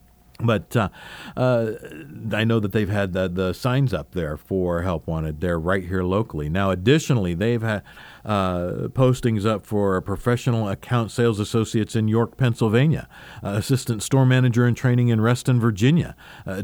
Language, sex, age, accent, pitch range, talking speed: English, male, 50-69, American, 100-135 Hz, 160 wpm